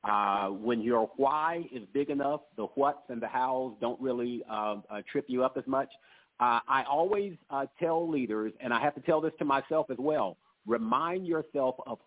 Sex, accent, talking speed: male, American, 195 wpm